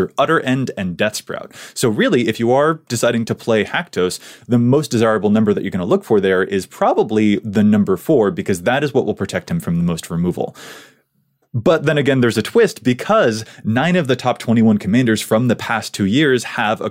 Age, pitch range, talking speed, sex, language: 20-39, 105-150 Hz, 215 wpm, male, English